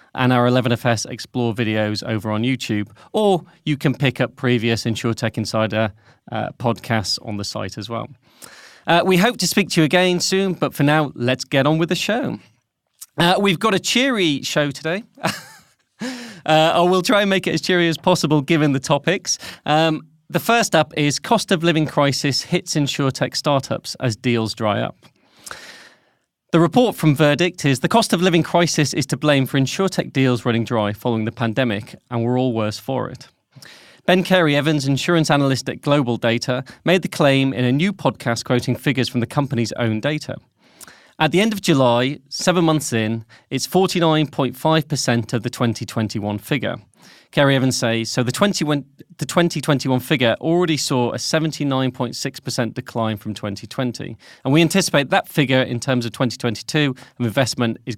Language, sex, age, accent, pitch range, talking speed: English, male, 30-49, British, 120-160 Hz, 175 wpm